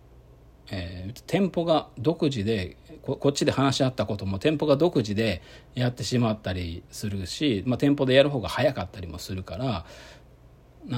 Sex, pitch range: male, 90-130 Hz